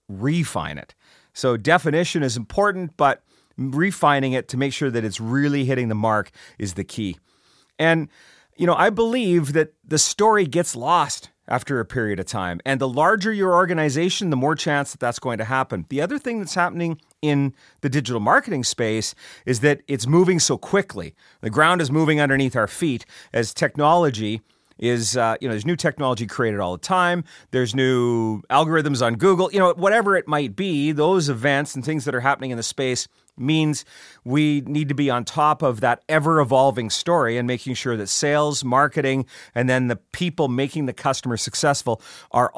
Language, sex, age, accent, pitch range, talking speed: English, male, 40-59, American, 120-155 Hz, 185 wpm